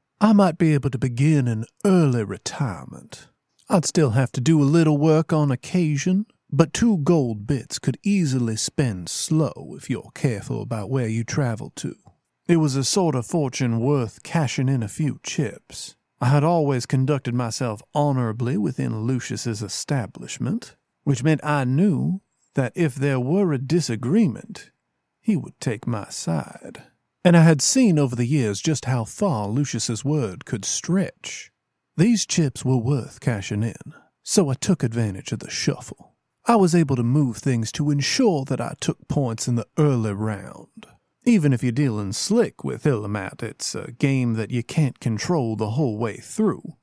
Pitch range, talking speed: 120-165 Hz, 170 wpm